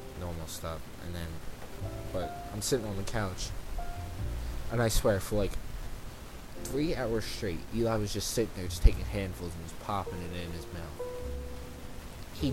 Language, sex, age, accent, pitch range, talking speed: English, male, 20-39, American, 85-110 Hz, 165 wpm